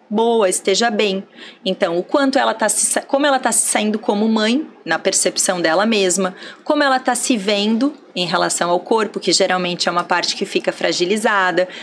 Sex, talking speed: female, 190 wpm